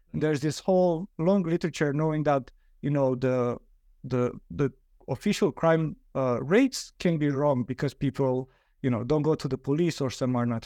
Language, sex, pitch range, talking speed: English, male, 130-160 Hz, 180 wpm